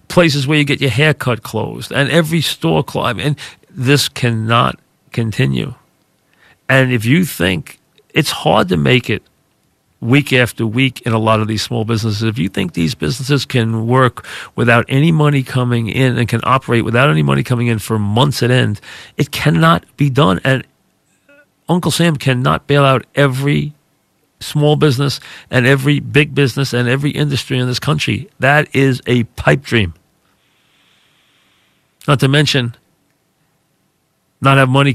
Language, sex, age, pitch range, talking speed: English, male, 40-59, 115-140 Hz, 160 wpm